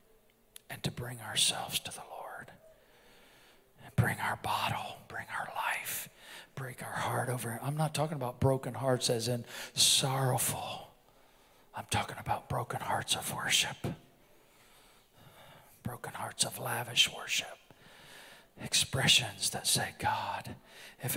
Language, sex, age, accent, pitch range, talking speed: English, male, 40-59, American, 130-155 Hz, 125 wpm